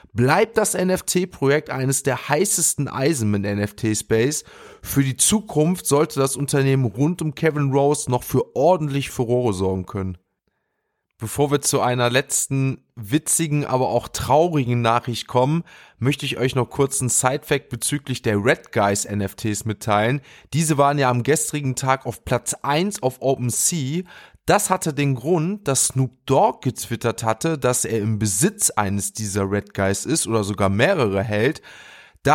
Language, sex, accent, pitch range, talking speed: German, male, German, 115-150 Hz, 160 wpm